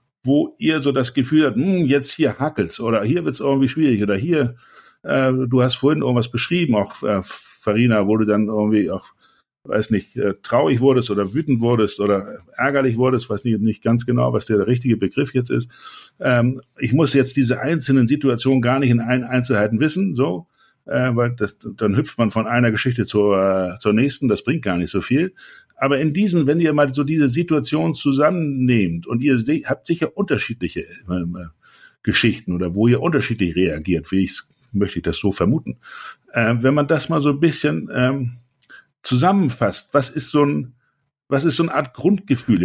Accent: German